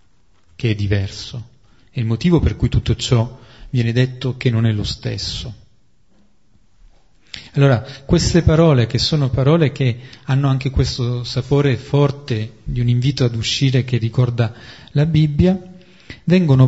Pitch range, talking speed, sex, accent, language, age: 115-140 Hz, 140 wpm, male, native, Italian, 30-49